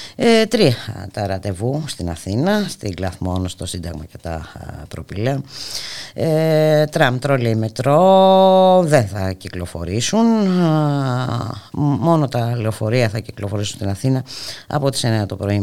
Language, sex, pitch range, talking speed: Greek, female, 95-140 Hz, 115 wpm